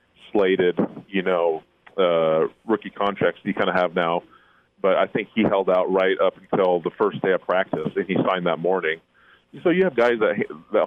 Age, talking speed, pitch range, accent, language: 30-49, 205 wpm, 85-100 Hz, American, English